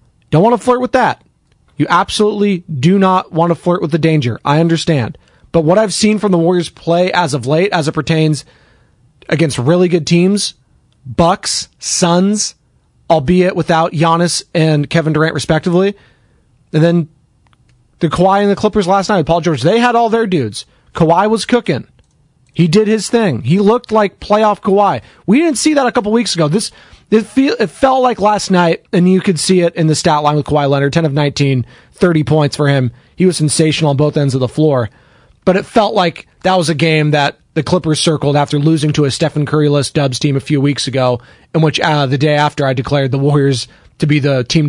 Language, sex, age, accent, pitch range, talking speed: English, male, 30-49, American, 145-190 Hz, 205 wpm